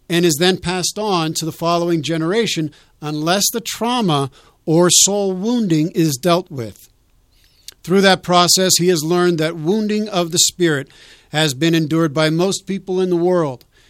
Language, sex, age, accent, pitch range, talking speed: English, male, 50-69, American, 155-185 Hz, 165 wpm